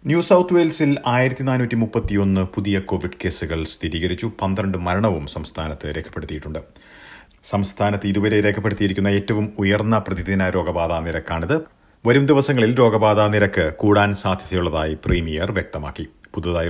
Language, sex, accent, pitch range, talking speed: Malayalam, male, native, 85-105 Hz, 95 wpm